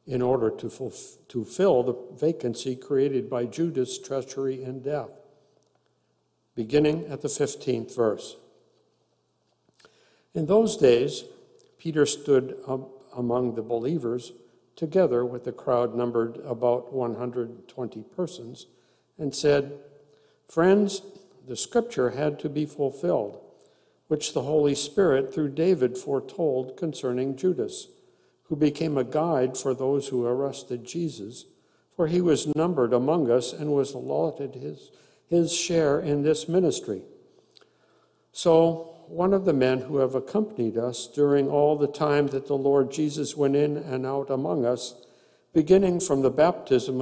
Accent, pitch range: American, 125-165 Hz